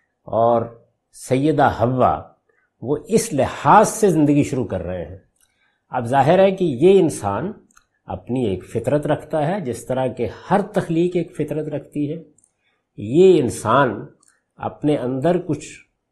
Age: 50-69